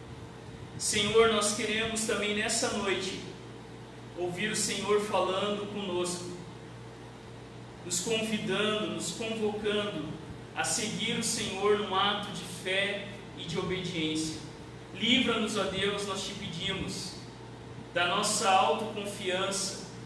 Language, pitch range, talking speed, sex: Portuguese, 180-220 Hz, 105 wpm, male